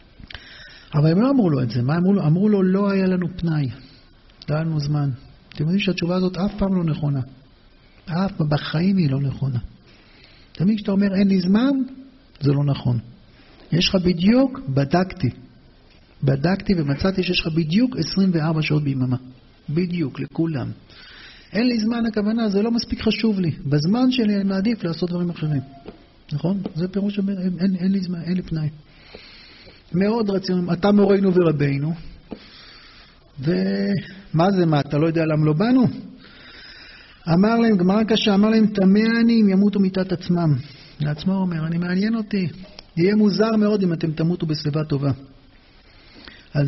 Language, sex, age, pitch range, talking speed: Hebrew, male, 50-69, 150-200 Hz, 155 wpm